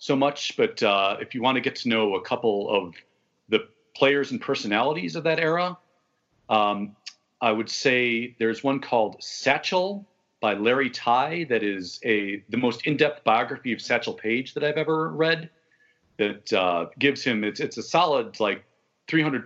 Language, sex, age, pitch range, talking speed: English, male, 40-59, 115-160 Hz, 175 wpm